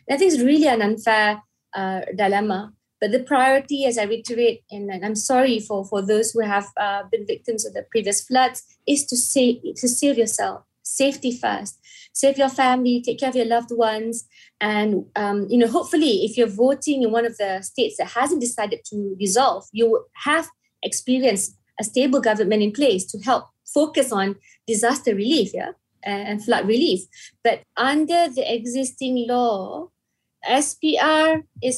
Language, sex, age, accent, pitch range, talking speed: English, female, 20-39, Malaysian, 220-275 Hz, 165 wpm